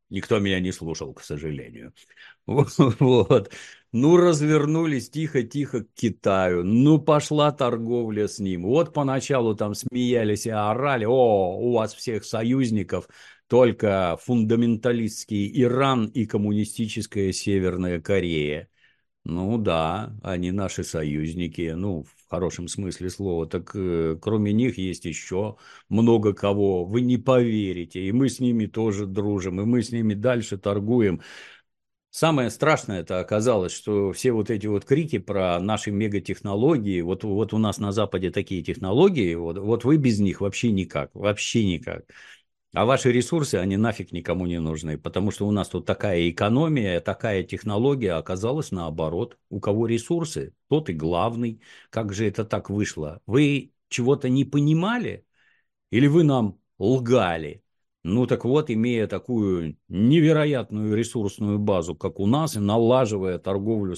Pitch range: 95-125 Hz